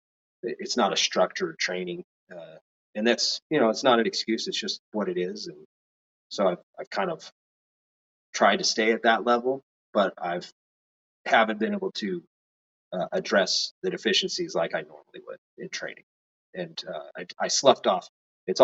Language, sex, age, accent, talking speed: English, male, 30-49, American, 175 wpm